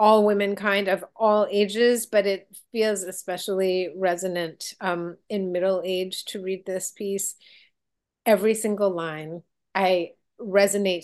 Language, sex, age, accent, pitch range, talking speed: English, female, 30-49, American, 175-215 Hz, 130 wpm